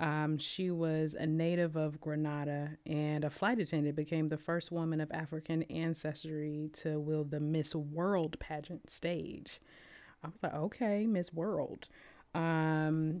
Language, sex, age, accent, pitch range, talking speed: English, female, 20-39, American, 145-170 Hz, 145 wpm